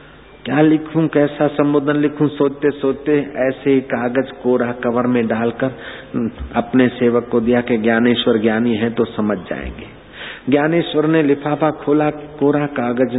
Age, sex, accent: 50-69, male, native